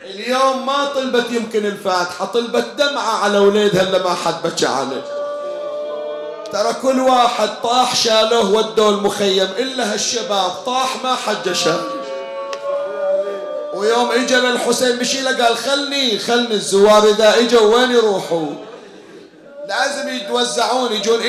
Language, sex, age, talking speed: Arabic, male, 40-59, 115 wpm